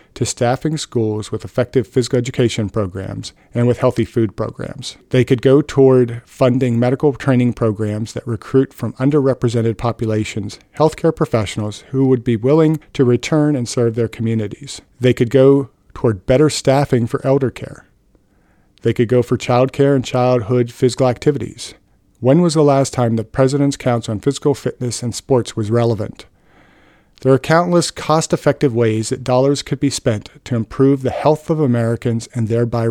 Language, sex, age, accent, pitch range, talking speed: English, male, 40-59, American, 115-135 Hz, 165 wpm